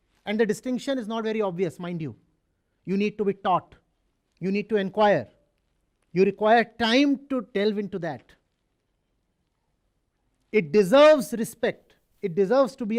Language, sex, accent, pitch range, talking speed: English, male, Indian, 190-265 Hz, 150 wpm